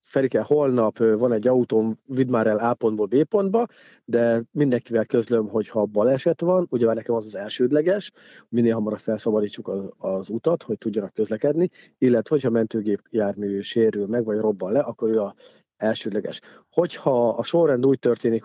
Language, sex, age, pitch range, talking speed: Hungarian, male, 30-49, 110-125 Hz, 165 wpm